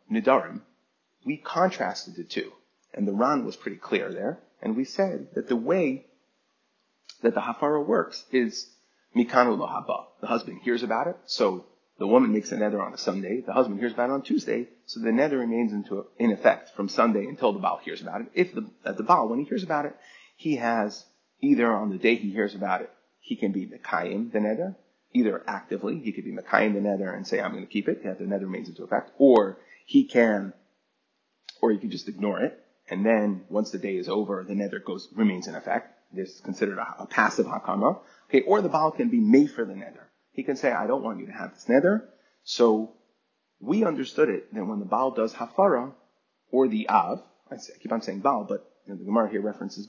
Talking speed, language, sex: 215 wpm, English, male